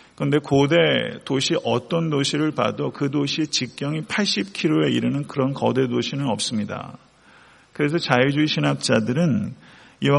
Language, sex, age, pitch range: Korean, male, 40-59, 125-155 Hz